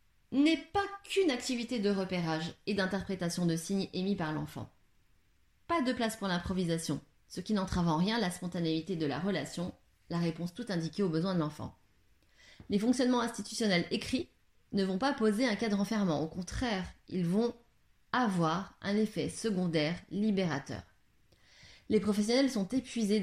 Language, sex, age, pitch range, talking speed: French, female, 30-49, 160-225 Hz, 155 wpm